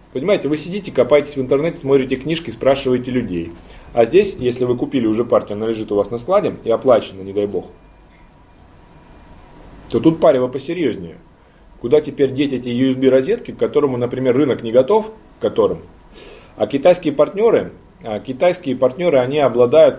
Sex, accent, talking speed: male, native, 155 wpm